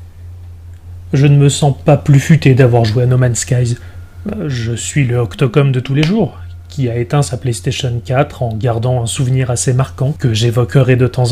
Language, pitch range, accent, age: French, 120-145 Hz, French, 30-49